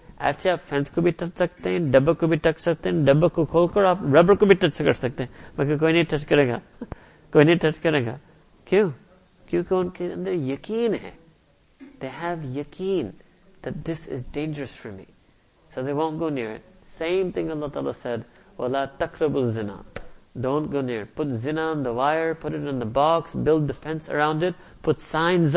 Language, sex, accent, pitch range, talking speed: English, male, Indian, 130-170 Hz, 185 wpm